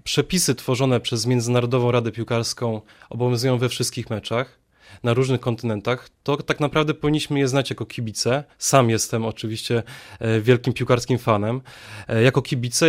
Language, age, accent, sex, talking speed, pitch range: Polish, 20-39, native, male, 135 wpm, 120-140 Hz